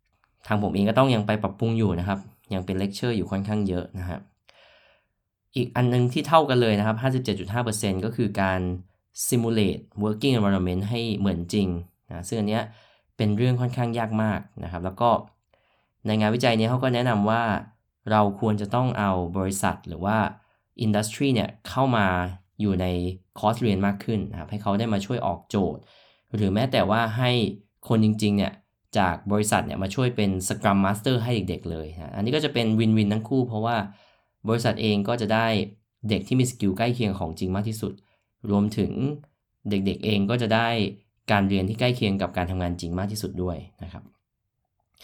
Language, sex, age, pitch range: Thai, male, 20-39, 95-115 Hz